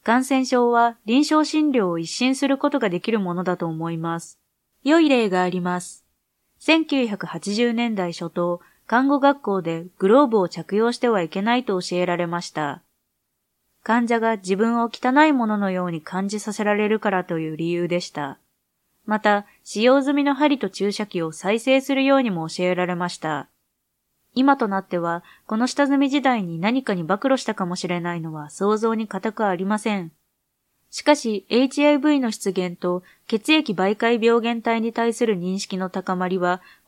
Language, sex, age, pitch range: Japanese, female, 20-39, 180-250 Hz